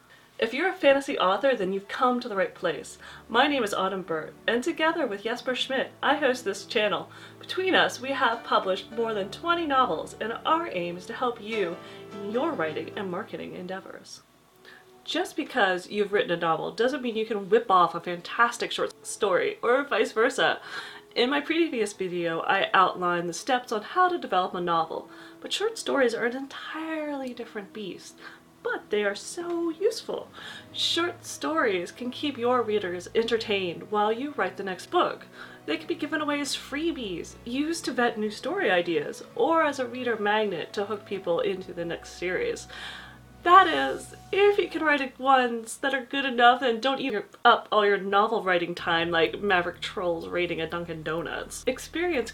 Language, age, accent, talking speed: English, 30-49, American, 185 wpm